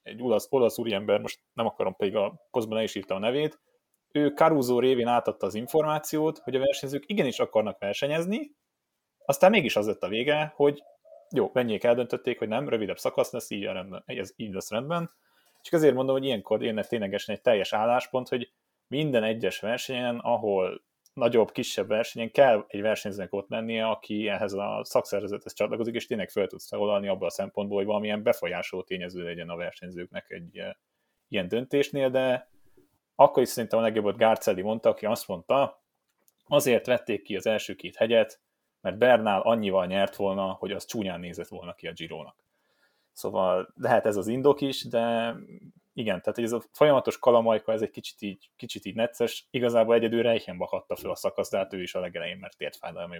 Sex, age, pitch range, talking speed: male, 30-49, 105-140 Hz, 180 wpm